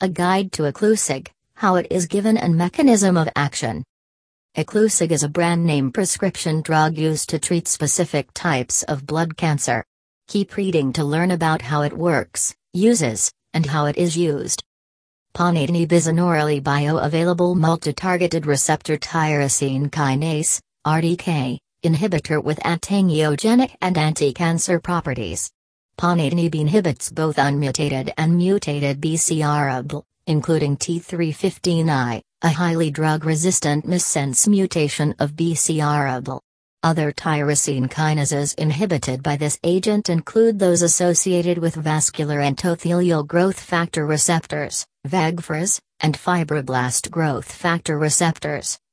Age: 40-59